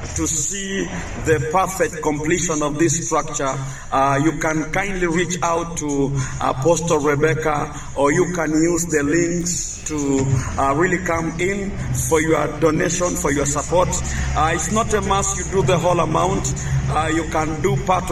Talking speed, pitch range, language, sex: 160 wpm, 145-170 Hz, English, male